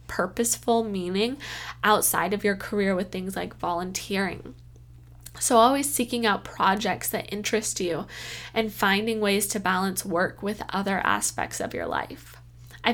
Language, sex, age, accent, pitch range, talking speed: English, female, 10-29, American, 195-230 Hz, 145 wpm